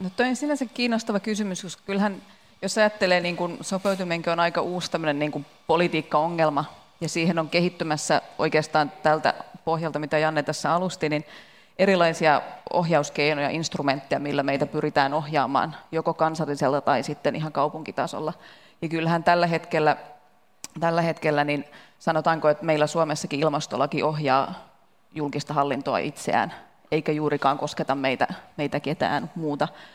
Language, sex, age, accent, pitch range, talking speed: Finnish, female, 30-49, native, 150-170 Hz, 130 wpm